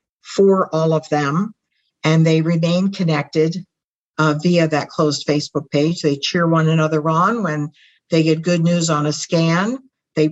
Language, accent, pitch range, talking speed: English, American, 150-170 Hz, 165 wpm